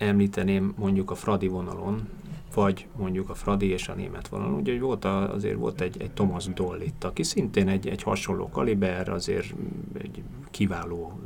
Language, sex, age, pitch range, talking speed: Hungarian, male, 30-49, 90-105 Hz, 170 wpm